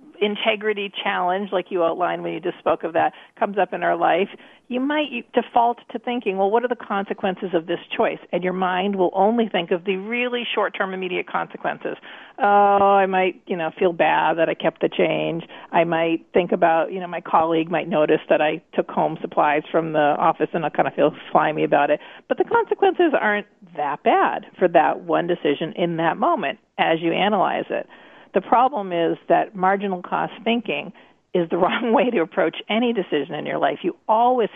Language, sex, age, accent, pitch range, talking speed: English, female, 40-59, American, 170-225 Hz, 205 wpm